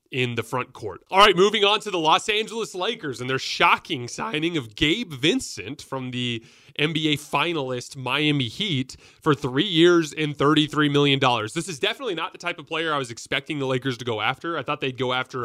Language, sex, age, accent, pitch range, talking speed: English, male, 30-49, American, 125-160 Hz, 210 wpm